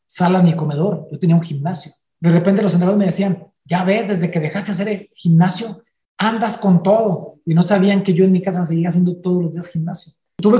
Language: Spanish